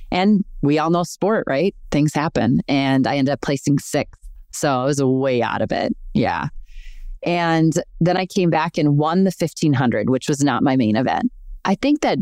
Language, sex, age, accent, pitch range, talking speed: English, female, 30-49, American, 130-170 Hz, 195 wpm